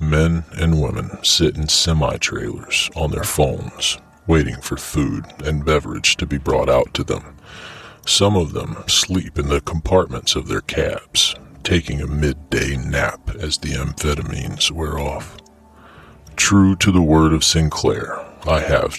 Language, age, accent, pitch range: English, 40-59, American, 75-85 Hz